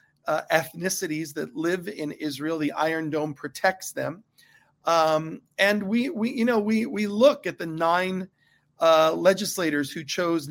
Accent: American